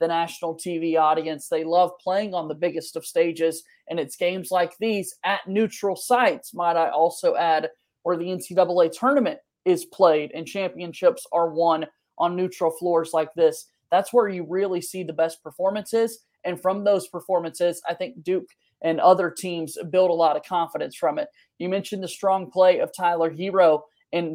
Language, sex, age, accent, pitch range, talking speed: English, male, 20-39, American, 170-210 Hz, 180 wpm